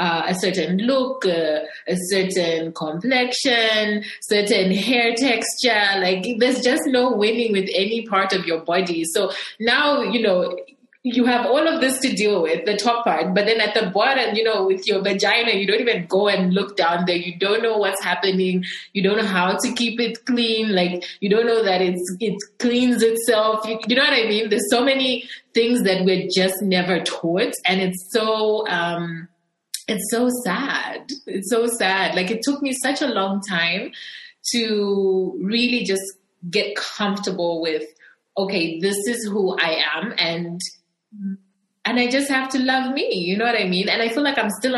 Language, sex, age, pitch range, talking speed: English, female, 20-39, 180-235 Hz, 190 wpm